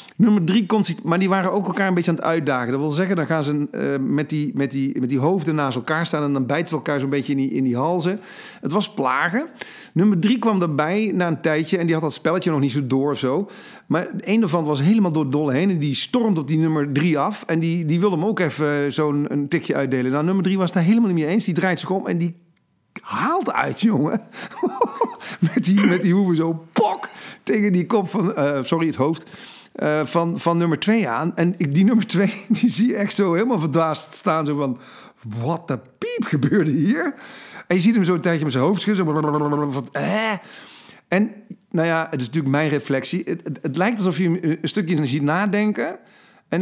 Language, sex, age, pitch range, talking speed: Dutch, male, 50-69, 150-195 Hz, 225 wpm